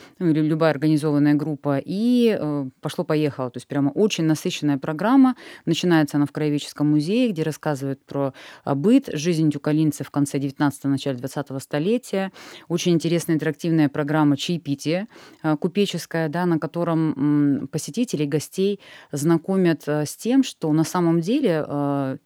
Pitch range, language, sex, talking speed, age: 150-190 Hz, Russian, female, 145 wpm, 20-39